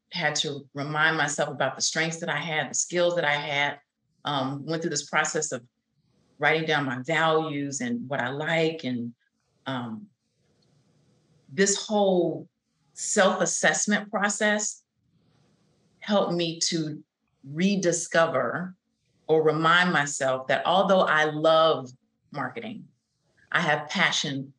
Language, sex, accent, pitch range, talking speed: English, female, American, 145-170 Hz, 120 wpm